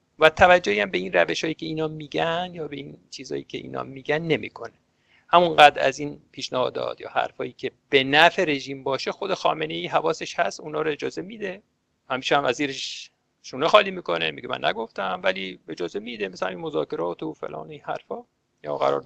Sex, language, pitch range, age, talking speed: male, English, 140-195 Hz, 50-69, 190 wpm